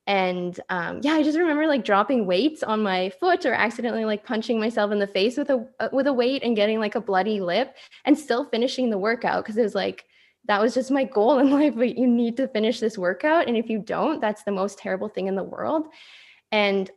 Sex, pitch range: female, 210-275 Hz